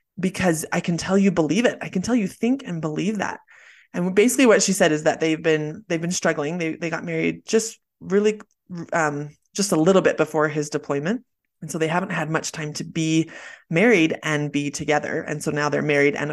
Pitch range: 150-180 Hz